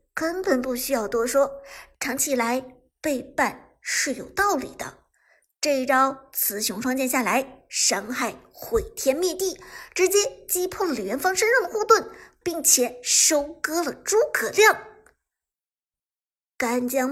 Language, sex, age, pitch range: Chinese, male, 50-69, 250-360 Hz